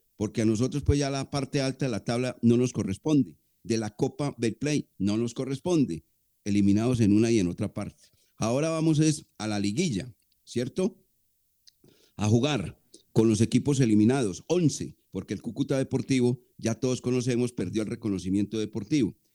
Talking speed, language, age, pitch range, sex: 165 wpm, Spanish, 40-59, 110-140 Hz, male